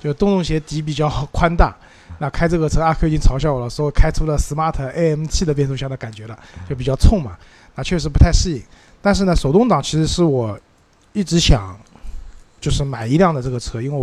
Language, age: Chinese, 20-39